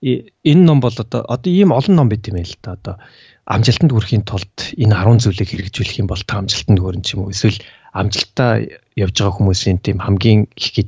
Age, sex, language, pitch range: 40-59, male, English, 95-120 Hz